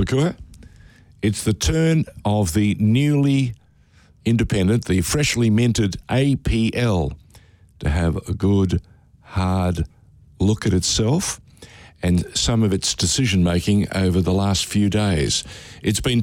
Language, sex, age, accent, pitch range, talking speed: English, male, 60-79, Australian, 95-115 Hz, 115 wpm